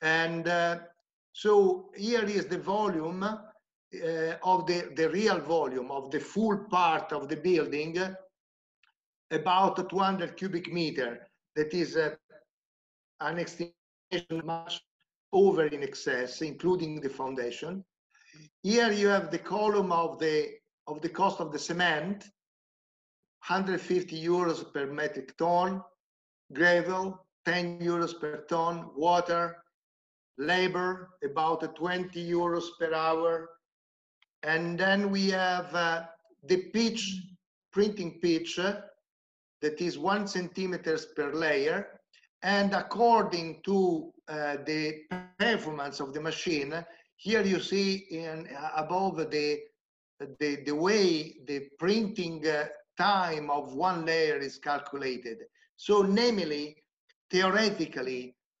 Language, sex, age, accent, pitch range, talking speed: English, male, 50-69, Italian, 155-190 Hz, 115 wpm